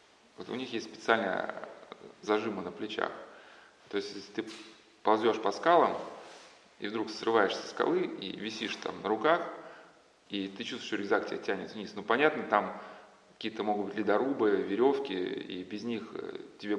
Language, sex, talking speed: Russian, male, 160 wpm